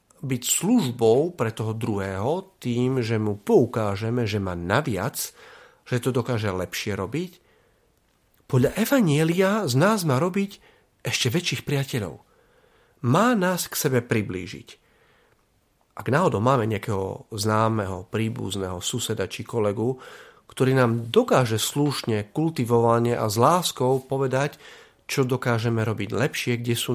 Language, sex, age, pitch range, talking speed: Slovak, male, 40-59, 105-150 Hz, 120 wpm